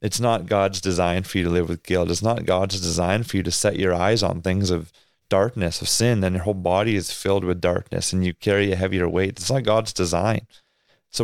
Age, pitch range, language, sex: 30-49, 95-110 Hz, English, male